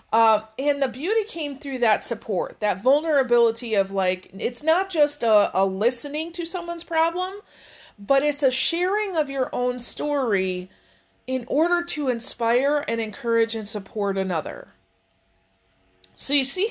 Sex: female